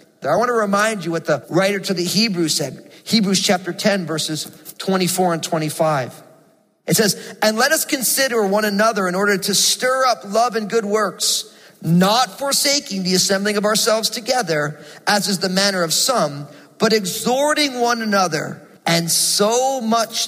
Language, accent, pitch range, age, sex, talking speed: English, American, 175-230 Hz, 40-59, male, 165 wpm